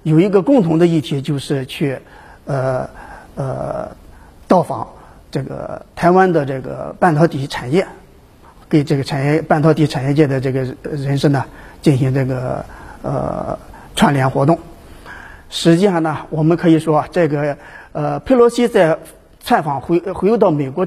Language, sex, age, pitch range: Chinese, male, 50-69, 145-185 Hz